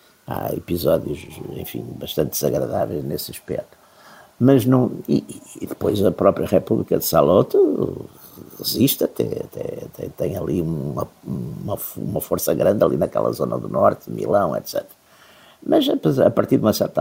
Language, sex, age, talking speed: Portuguese, male, 60-79, 140 wpm